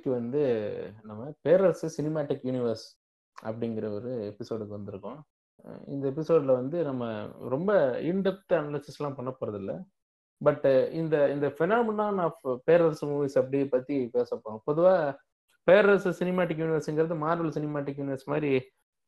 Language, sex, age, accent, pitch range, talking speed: Tamil, male, 20-39, native, 125-160 Hz, 120 wpm